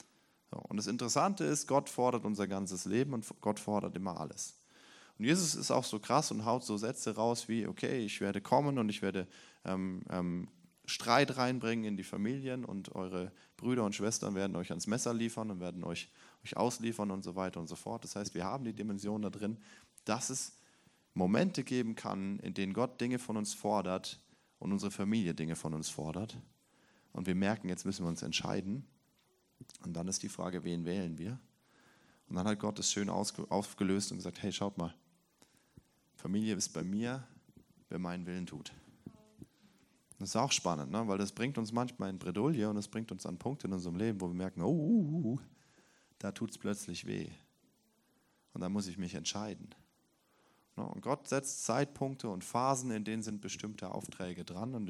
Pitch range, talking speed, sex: 95-120 Hz, 190 wpm, male